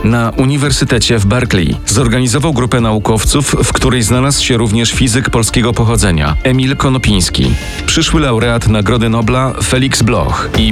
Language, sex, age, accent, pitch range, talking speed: Polish, male, 40-59, native, 100-130 Hz, 135 wpm